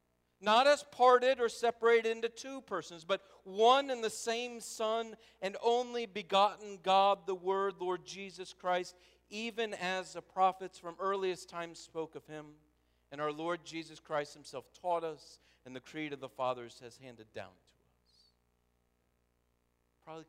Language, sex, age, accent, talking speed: English, male, 50-69, American, 155 wpm